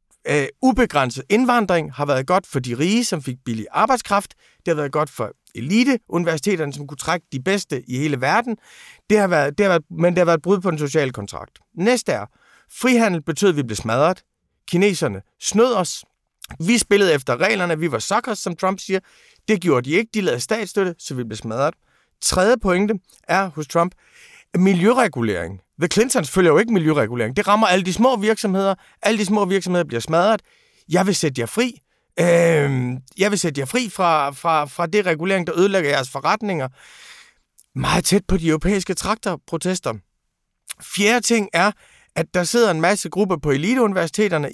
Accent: native